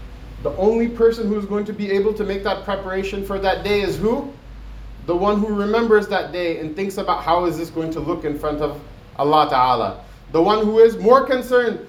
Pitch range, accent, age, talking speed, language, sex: 170-215 Hz, American, 30-49, 220 wpm, English, male